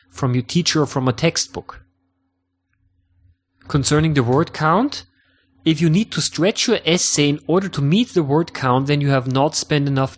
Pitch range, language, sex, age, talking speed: 115-155 Hz, English, male, 30-49, 185 wpm